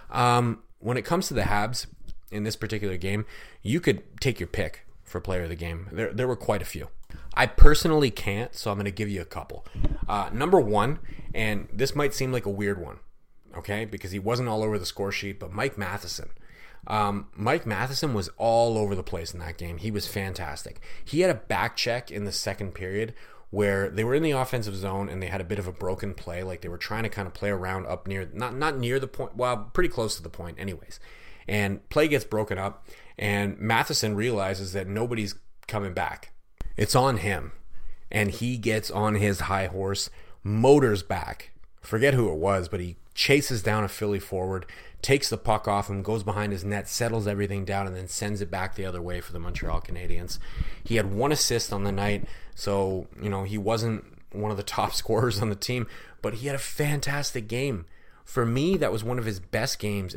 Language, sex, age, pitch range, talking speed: English, male, 30-49, 95-115 Hz, 215 wpm